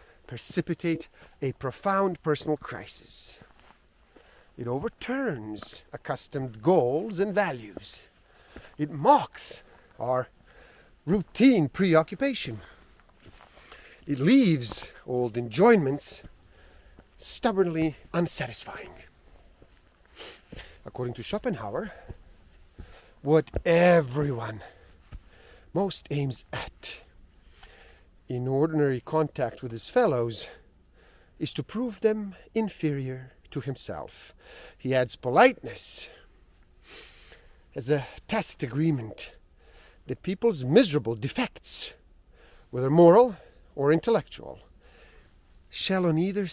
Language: English